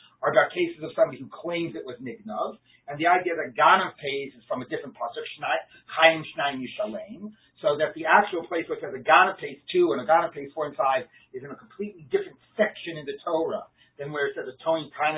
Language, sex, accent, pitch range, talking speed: English, male, American, 155-225 Hz, 230 wpm